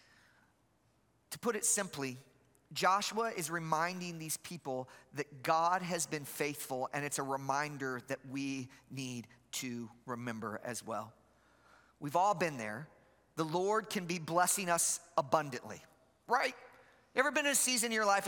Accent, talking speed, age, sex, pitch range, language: American, 150 wpm, 30-49, male, 145-215 Hz, English